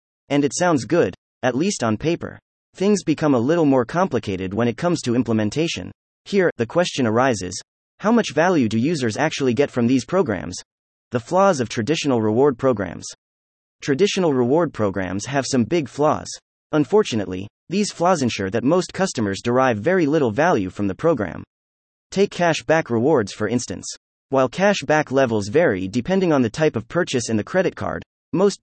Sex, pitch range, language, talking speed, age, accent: male, 105-160 Hz, English, 170 wpm, 30-49, American